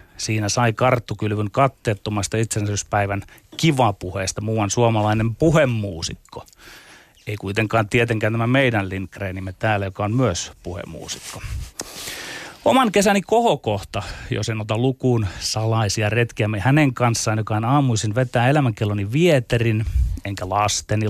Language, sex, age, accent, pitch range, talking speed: Finnish, male, 30-49, native, 100-135 Hz, 110 wpm